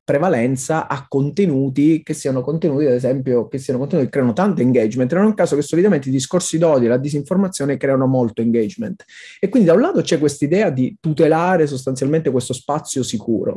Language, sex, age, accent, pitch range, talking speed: Italian, male, 30-49, native, 125-160 Hz, 195 wpm